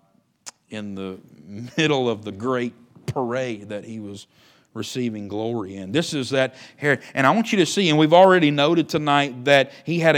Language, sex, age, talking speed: English, male, 40-59, 185 wpm